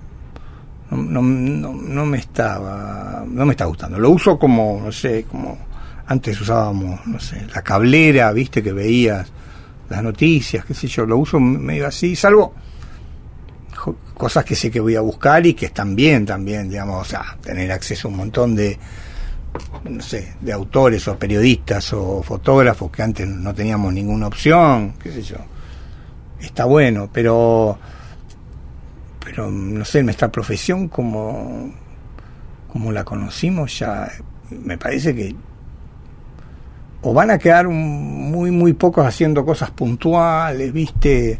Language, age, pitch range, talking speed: Spanish, 60-79, 100-140 Hz, 145 wpm